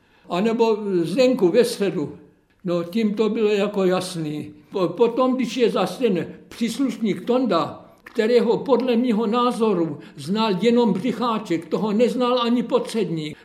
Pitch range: 190-245 Hz